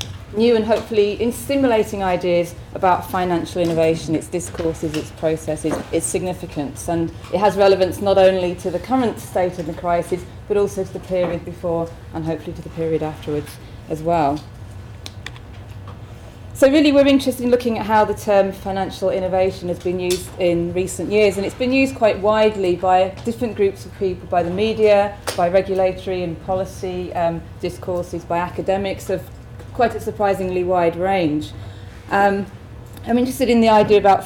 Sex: female